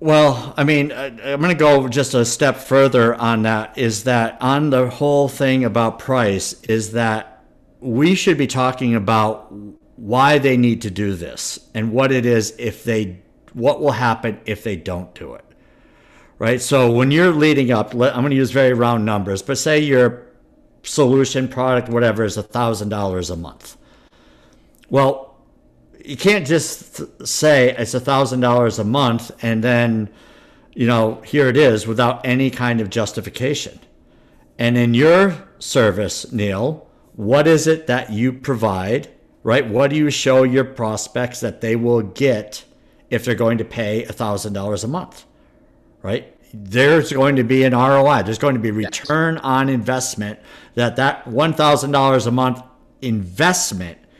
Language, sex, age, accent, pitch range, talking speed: English, male, 50-69, American, 110-135 Hz, 160 wpm